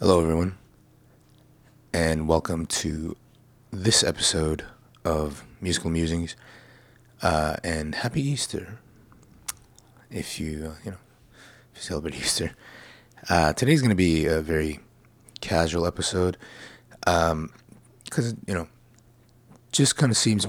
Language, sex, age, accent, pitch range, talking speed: English, male, 30-49, American, 80-120 Hz, 115 wpm